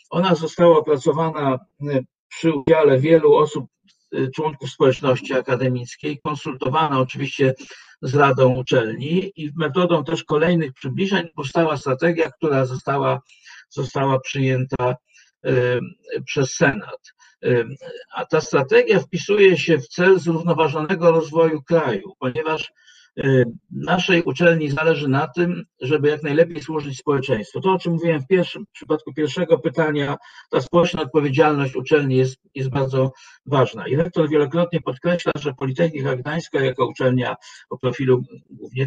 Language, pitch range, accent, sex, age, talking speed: Polish, 135-170 Hz, native, male, 50-69, 120 wpm